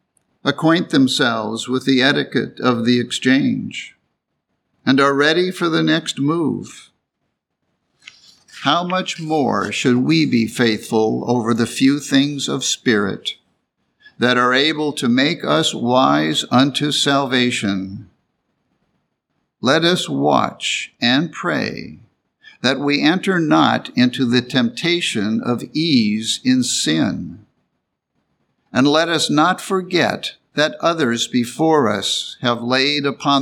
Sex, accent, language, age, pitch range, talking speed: male, American, English, 60-79, 115-145 Hz, 115 wpm